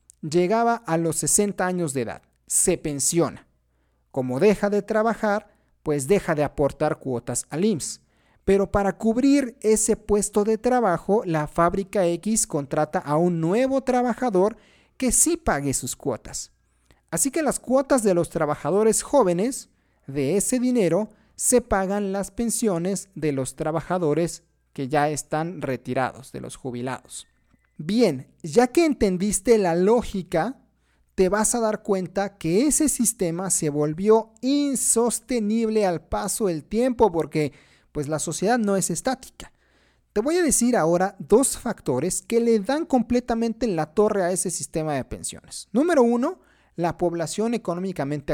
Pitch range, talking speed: 155-225 Hz, 145 wpm